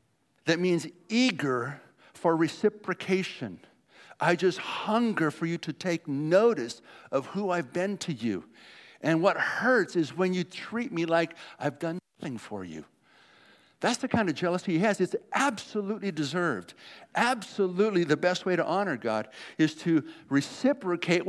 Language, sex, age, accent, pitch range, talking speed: English, male, 60-79, American, 135-190 Hz, 150 wpm